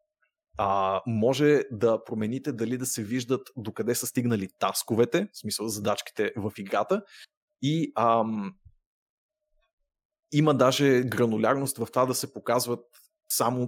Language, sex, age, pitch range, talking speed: Bulgarian, male, 30-49, 110-135 Hz, 125 wpm